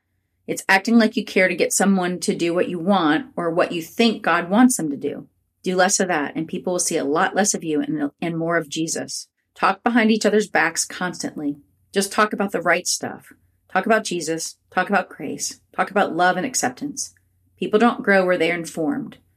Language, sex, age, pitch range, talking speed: English, female, 40-59, 160-200 Hz, 210 wpm